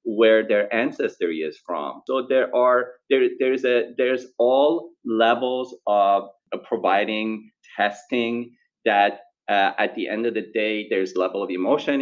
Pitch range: 100-170 Hz